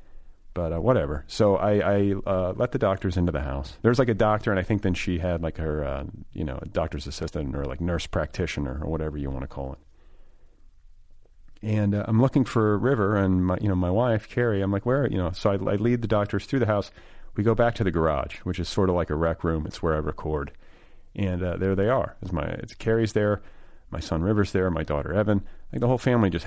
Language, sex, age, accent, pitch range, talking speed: English, male, 40-59, American, 80-100 Hz, 245 wpm